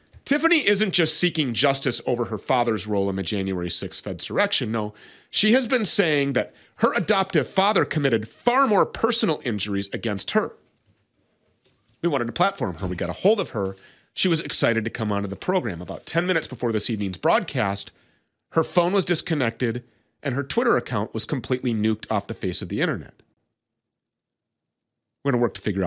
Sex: male